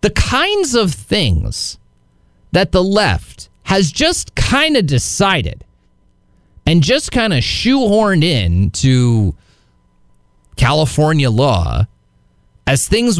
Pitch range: 115-190 Hz